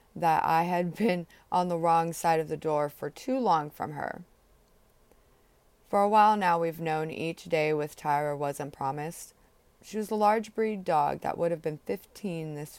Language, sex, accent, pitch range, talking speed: English, female, American, 155-205 Hz, 190 wpm